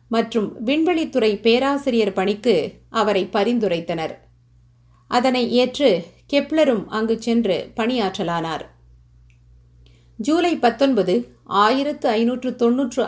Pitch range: 195-260 Hz